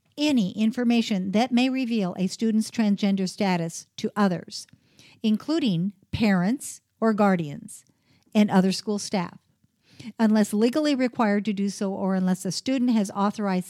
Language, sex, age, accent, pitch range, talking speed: English, female, 50-69, American, 190-240 Hz, 135 wpm